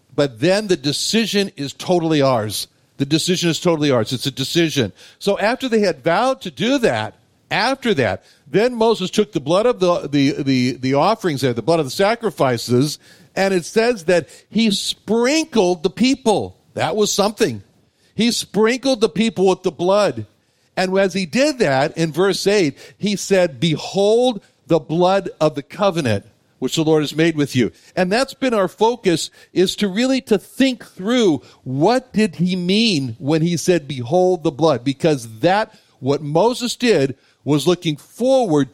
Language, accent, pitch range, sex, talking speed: English, American, 140-205 Hz, male, 170 wpm